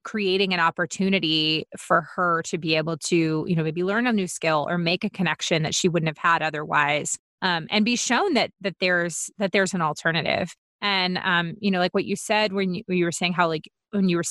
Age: 30-49